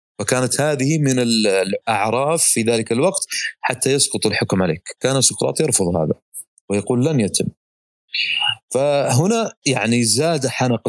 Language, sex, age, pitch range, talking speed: Arabic, male, 30-49, 105-145 Hz, 120 wpm